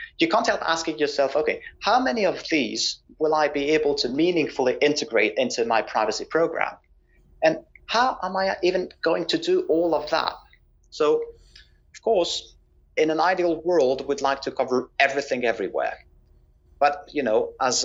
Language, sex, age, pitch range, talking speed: English, male, 30-49, 120-155 Hz, 165 wpm